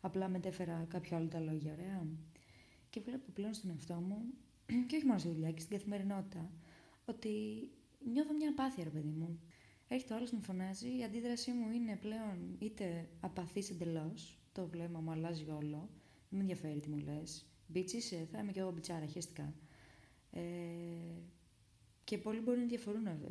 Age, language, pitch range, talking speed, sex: 20-39, Greek, 160-210 Hz, 165 wpm, female